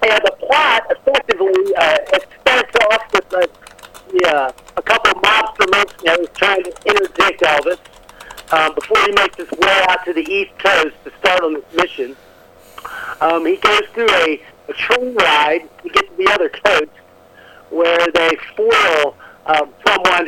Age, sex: 50-69, male